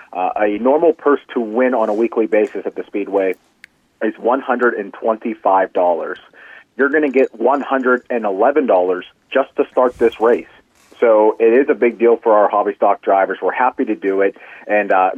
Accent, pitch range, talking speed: American, 105-130 Hz, 170 wpm